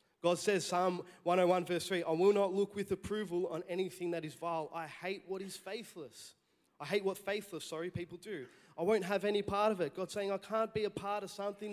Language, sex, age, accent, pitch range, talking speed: English, male, 20-39, Australian, 155-195 Hz, 230 wpm